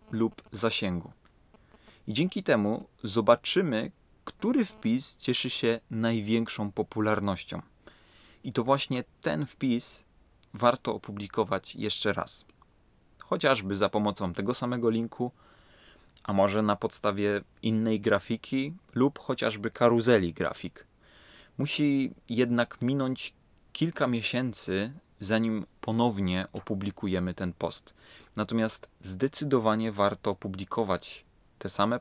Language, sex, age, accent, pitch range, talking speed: Polish, male, 20-39, native, 100-125 Hz, 100 wpm